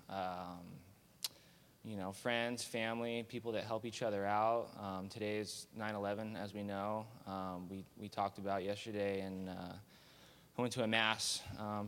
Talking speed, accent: 165 wpm, American